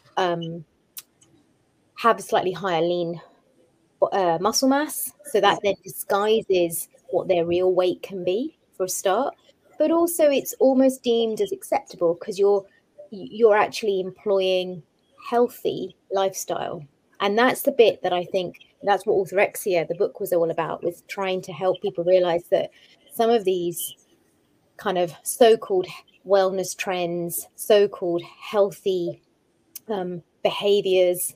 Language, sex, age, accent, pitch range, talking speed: English, female, 20-39, British, 170-210 Hz, 135 wpm